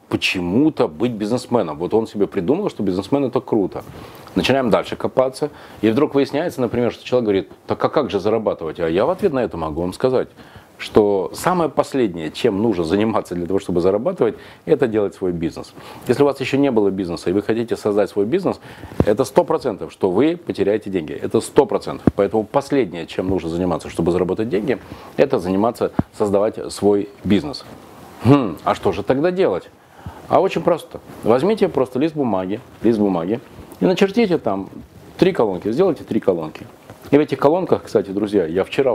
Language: Russian